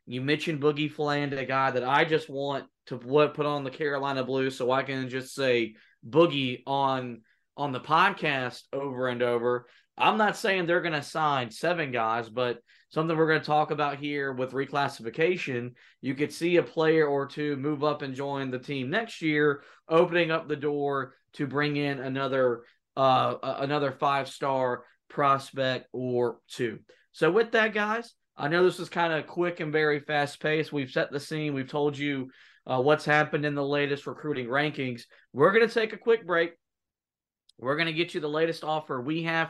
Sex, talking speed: male, 190 wpm